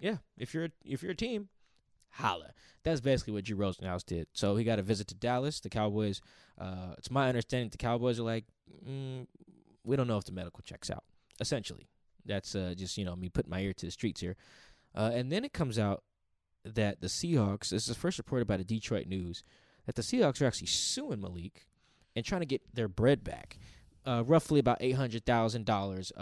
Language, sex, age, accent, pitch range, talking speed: English, male, 10-29, American, 95-125 Hz, 205 wpm